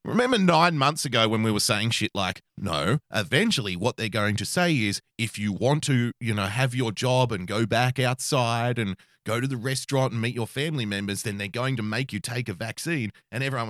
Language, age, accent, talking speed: English, 30-49, Australian, 230 wpm